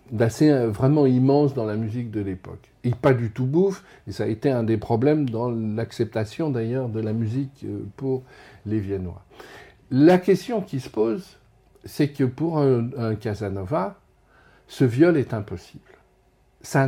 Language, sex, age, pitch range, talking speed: French, male, 50-69, 115-150 Hz, 160 wpm